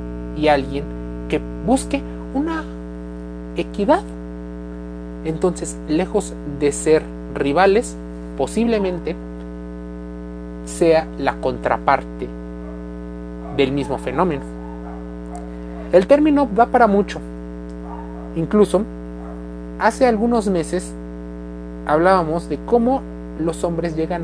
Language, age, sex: Spanish, 30-49, male